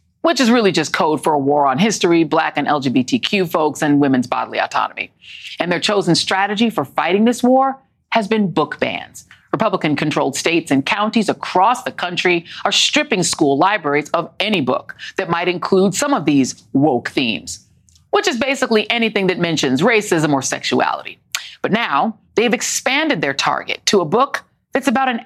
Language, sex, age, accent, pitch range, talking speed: English, female, 40-59, American, 155-230 Hz, 175 wpm